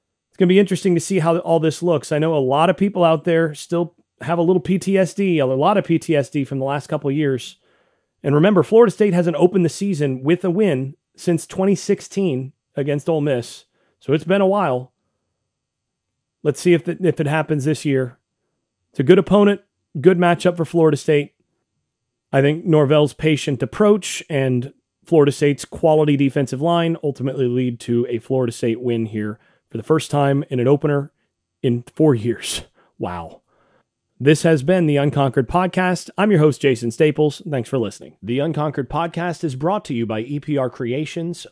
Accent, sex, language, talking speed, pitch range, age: American, male, English, 180 wpm, 135-175 Hz, 30-49